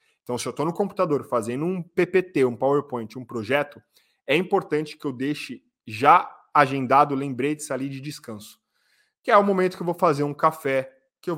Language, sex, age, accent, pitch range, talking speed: Portuguese, male, 20-39, Brazilian, 130-175 Hz, 195 wpm